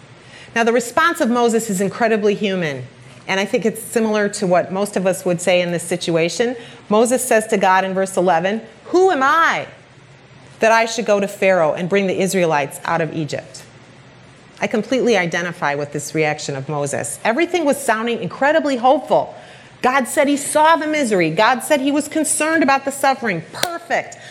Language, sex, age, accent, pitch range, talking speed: English, female, 30-49, American, 180-245 Hz, 185 wpm